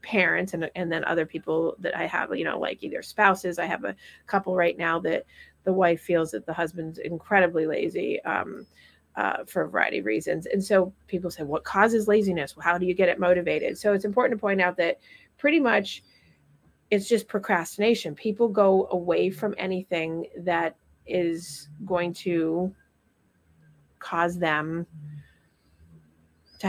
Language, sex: English, female